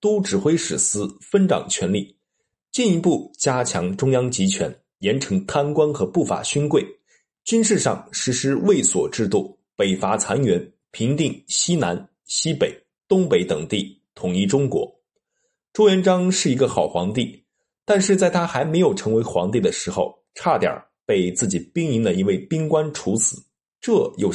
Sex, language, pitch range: male, Chinese, 125-195 Hz